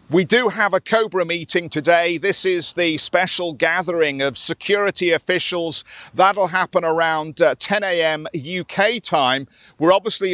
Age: 50-69